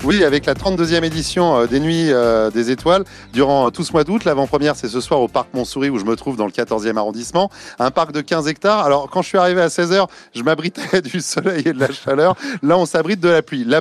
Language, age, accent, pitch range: French, 30-49, French, 125-175 Hz